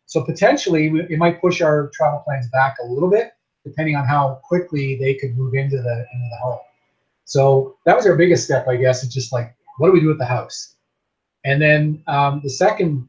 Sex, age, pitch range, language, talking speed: male, 30-49, 130-165 Hz, English, 215 wpm